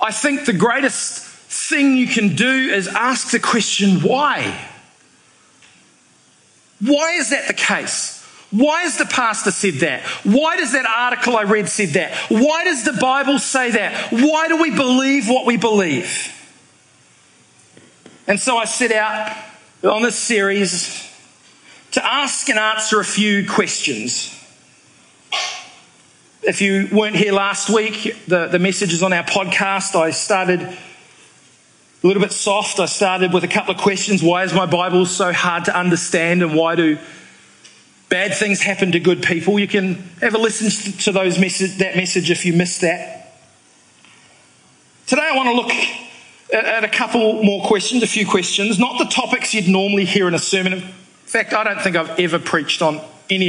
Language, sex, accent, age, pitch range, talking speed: English, male, Australian, 40-59, 185-235 Hz, 165 wpm